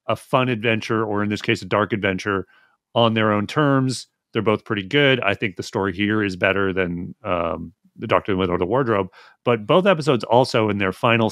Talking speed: 225 wpm